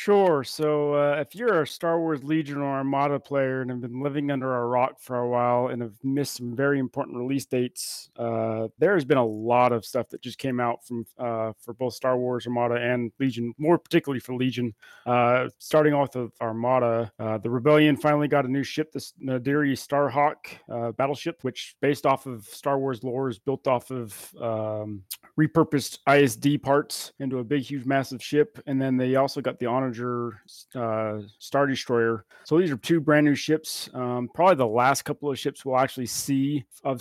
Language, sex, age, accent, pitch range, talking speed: English, male, 30-49, American, 120-140 Hz, 200 wpm